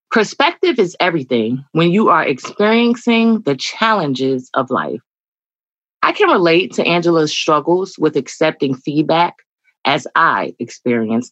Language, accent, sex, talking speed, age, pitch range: English, American, female, 120 wpm, 20-39, 145-215 Hz